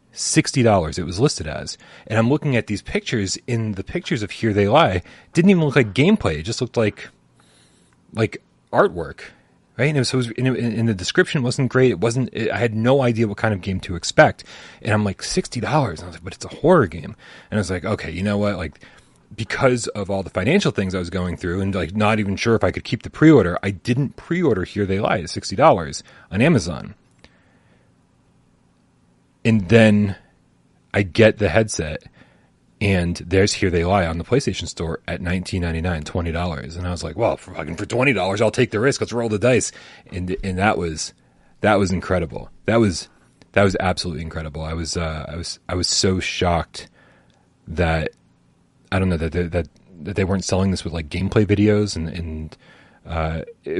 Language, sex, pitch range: English, male, 85-115 Hz